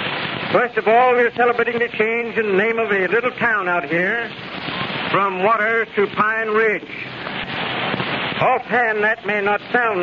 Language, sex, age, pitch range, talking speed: English, male, 70-89, 195-225 Hz, 155 wpm